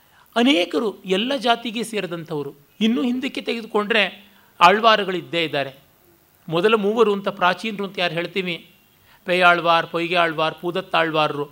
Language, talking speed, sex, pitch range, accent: Kannada, 100 wpm, male, 155-205 Hz, native